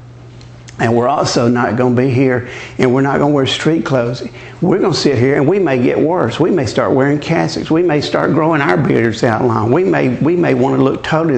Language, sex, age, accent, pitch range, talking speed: English, male, 50-69, American, 120-140 Hz, 250 wpm